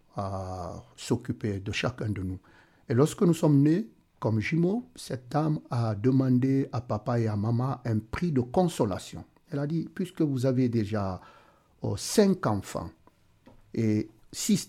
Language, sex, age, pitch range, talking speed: French, male, 50-69, 100-130 Hz, 155 wpm